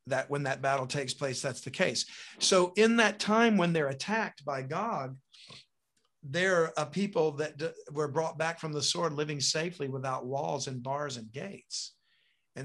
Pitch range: 130-165 Hz